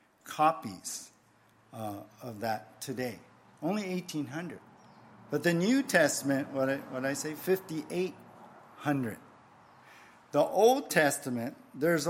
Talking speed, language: 115 wpm, English